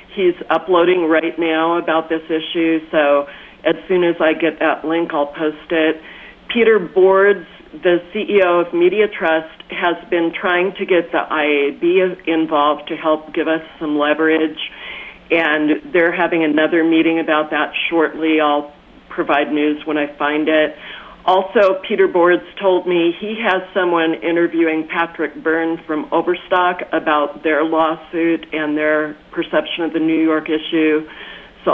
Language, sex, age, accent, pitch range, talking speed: English, female, 50-69, American, 155-180 Hz, 150 wpm